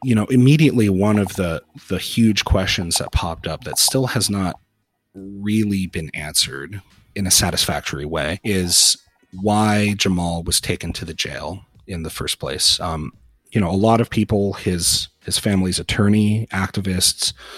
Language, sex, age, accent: English, male, 30-49, American